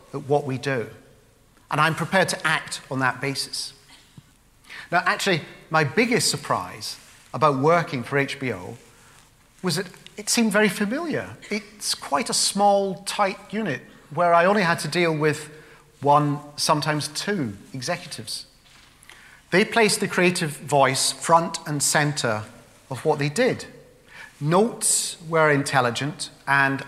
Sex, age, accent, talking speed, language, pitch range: male, 40-59, British, 135 wpm, English, 140-200 Hz